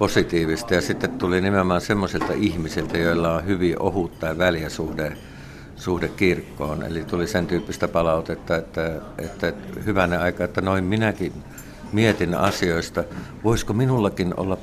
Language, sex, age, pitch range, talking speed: Finnish, male, 60-79, 85-105 Hz, 145 wpm